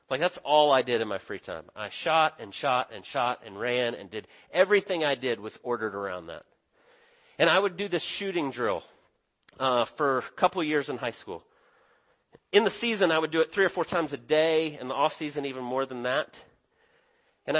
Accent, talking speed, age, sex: American, 220 wpm, 40-59, male